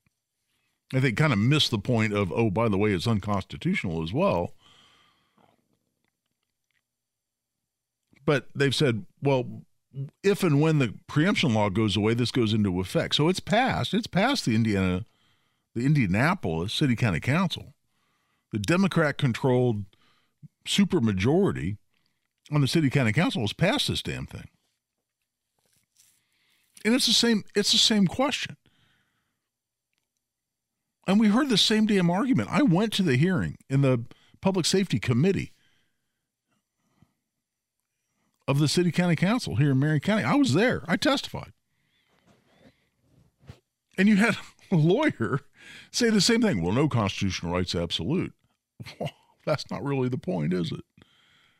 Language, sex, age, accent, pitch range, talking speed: English, male, 50-69, American, 115-190 Hz, 135 wpm